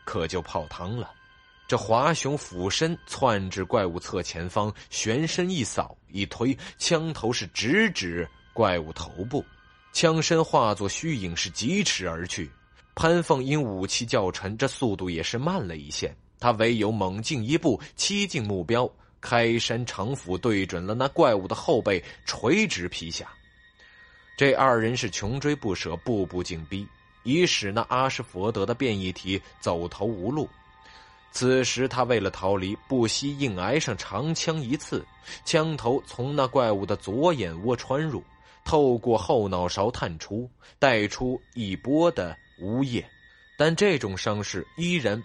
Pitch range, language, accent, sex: 95-135 Hz, Chinese, native, male